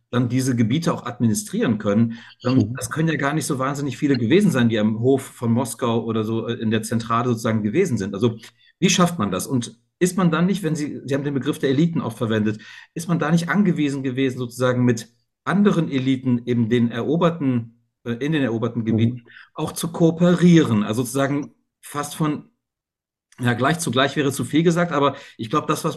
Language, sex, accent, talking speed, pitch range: German, male, German, 195 wpm, 120-155 Hz